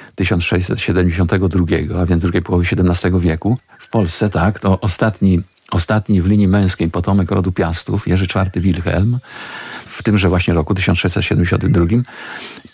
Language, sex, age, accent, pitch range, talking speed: Polish, male, 50-69, native, 90-105 Hz, 125 wpm